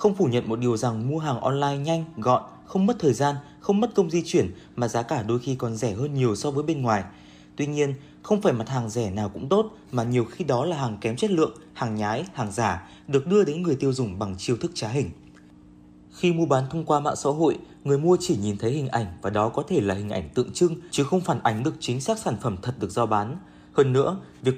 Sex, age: male, 20-39